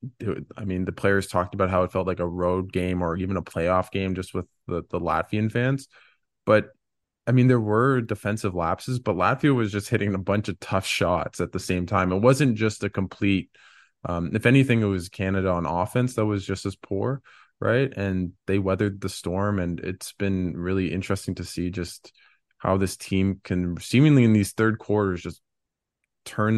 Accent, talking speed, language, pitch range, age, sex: American, 200 wpm, English, 90-105 Hz, 20-39, male